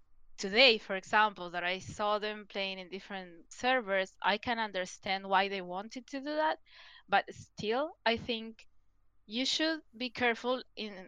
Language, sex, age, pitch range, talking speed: English, female, 20-39, 190-240 Hz, 155 wpm